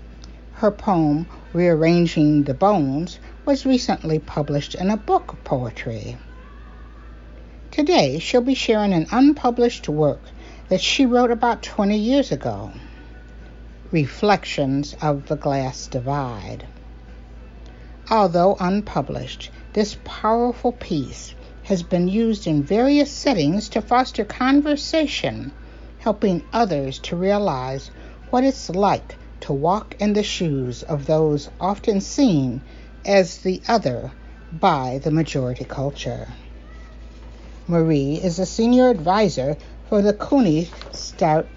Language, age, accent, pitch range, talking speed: English, 60-79, American, 135-220 Hz, 115 wpm